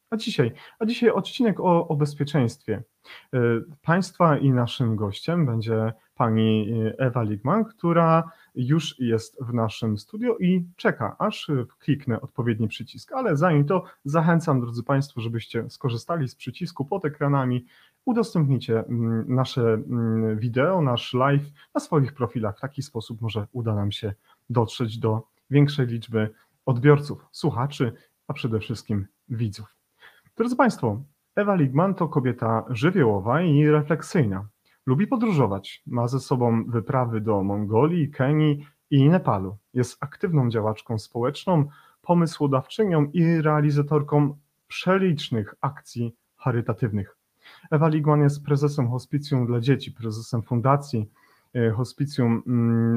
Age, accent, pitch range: 30-49, native, 115-150 Hz